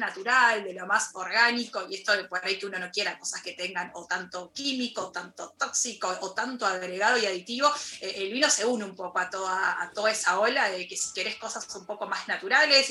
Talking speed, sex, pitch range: 230 wpm, female, 185-230 Hz